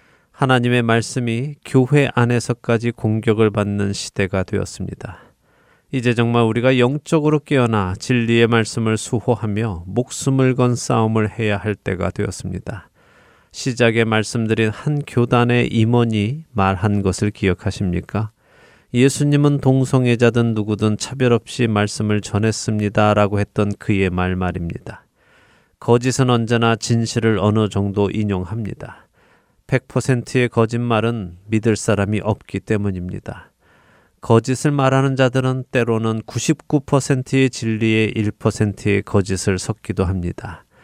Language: Korean